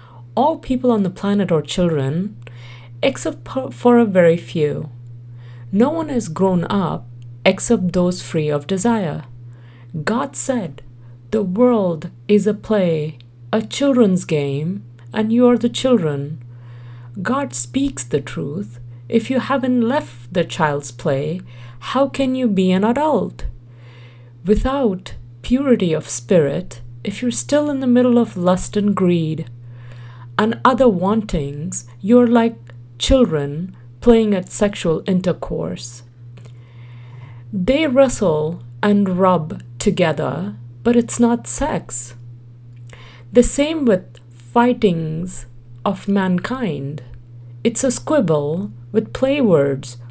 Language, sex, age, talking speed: English, female, 50-69, 115 wpm